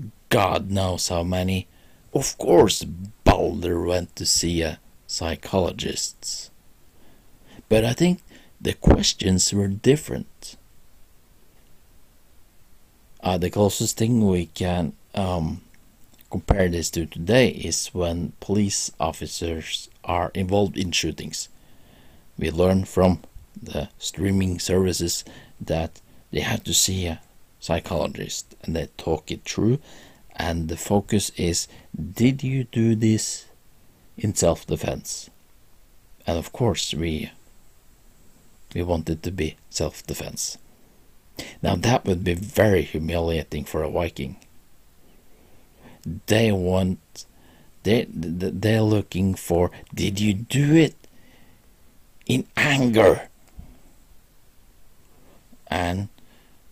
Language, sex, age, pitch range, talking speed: English, male, 50-69, 85-105 Hz, 105 wpm